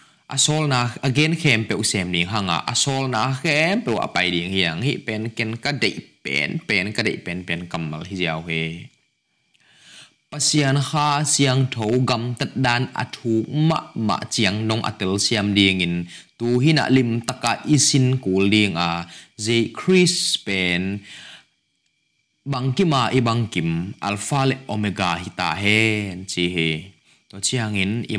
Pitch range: 100-130 Hz